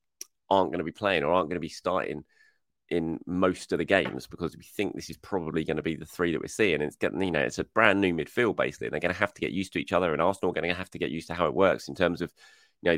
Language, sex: English, male